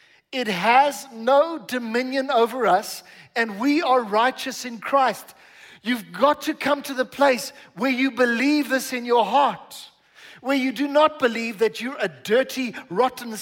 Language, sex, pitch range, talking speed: English, male, 225-280 Hz, 160 wpm